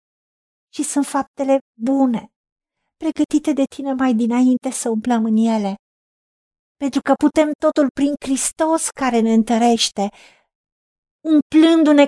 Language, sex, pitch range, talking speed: Romanian, female, 235-295 Hz, 115 wpm